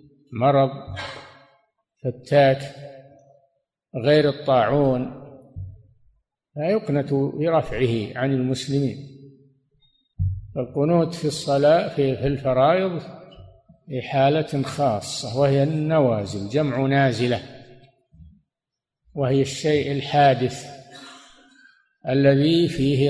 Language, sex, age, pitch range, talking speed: Arabic, male, 50-69, 130-155 Hz, 65 wpm